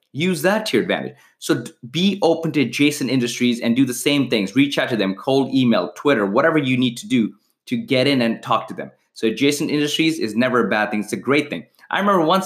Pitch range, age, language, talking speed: 105-135 Hz, 30-49, English, 240 wpm